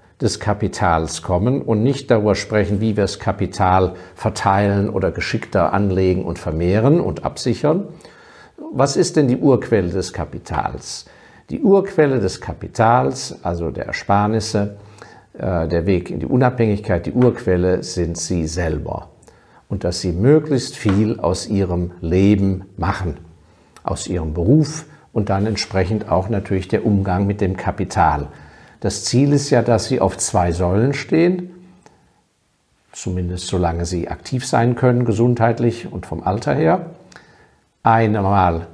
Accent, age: German, 50-69